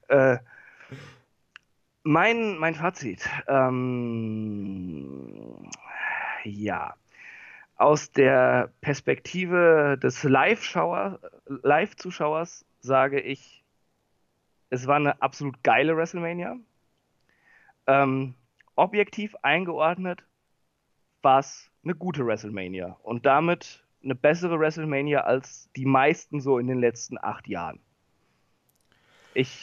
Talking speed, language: 85 wpm, German